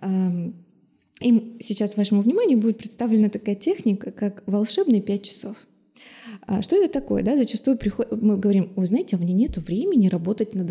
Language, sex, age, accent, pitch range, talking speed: Russian, female, 20-39, native, 195-235 Hz, 140 wpm